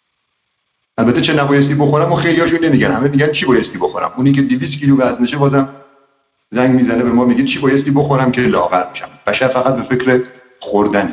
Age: 60-79